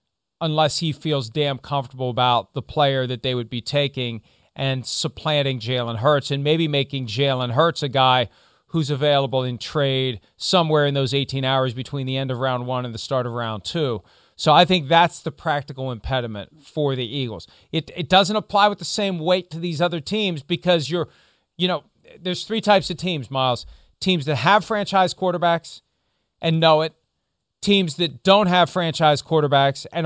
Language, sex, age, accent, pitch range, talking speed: English, male, 40-59, American, 135-180 Hz, 185 wpm